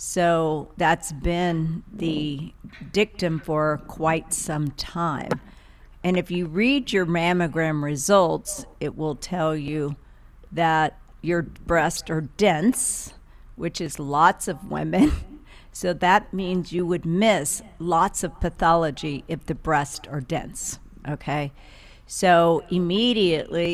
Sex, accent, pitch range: female, American, 160-190 Hz